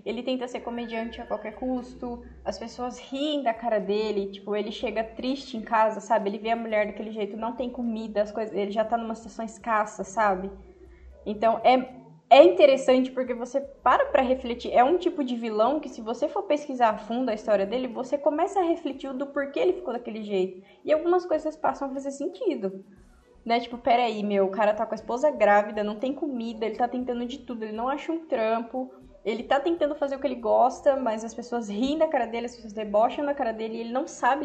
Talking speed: 220 wpm